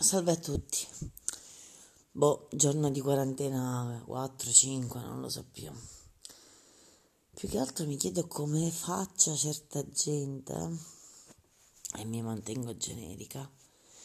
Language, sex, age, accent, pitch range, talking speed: Italian, female, 30-49, native, 125-160 Hz, 105 wpm